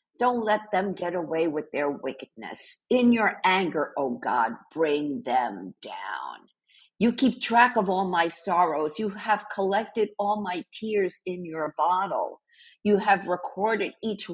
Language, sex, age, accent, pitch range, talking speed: English, female, 50-69, American, 160-220 Hz, 150 wpm